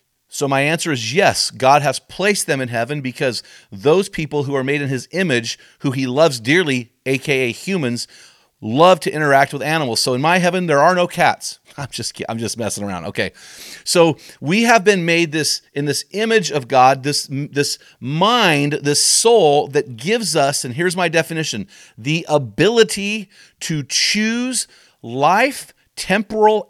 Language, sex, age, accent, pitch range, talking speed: English, male, 40-59, American, 135-175 Hz, 170 wpm